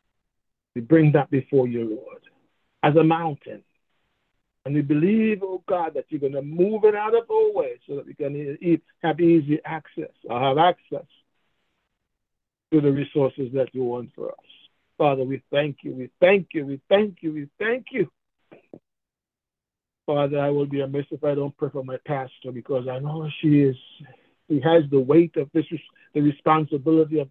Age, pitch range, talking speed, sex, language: 60-79, 145-180 Hz, 180 wpm, male, English